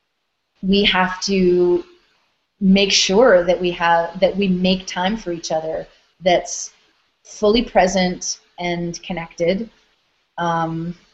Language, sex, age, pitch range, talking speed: English, female, 30-49, 180-215 Hz, 115 wpm